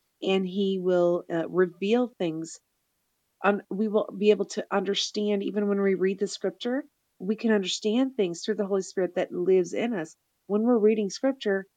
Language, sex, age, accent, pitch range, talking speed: English, female, 40-59, American, 165-205 Hz, 180 wpm